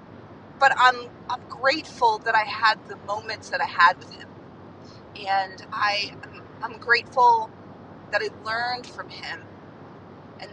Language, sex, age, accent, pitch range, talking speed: English, female, 40-59, American, 205-310 Hz, 135 wpm